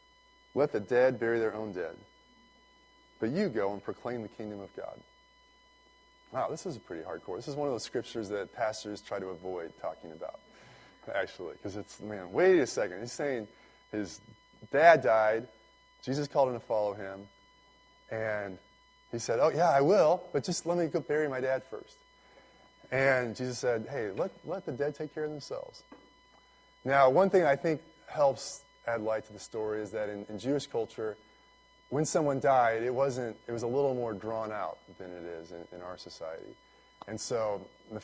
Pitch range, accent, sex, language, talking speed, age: 105-150 Hz, American, male, English, 190 wpm, 20-39